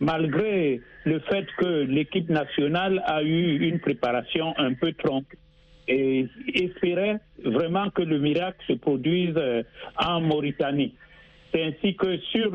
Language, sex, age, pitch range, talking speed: French, male, 60-79, 145-185 Hz, 130 wpm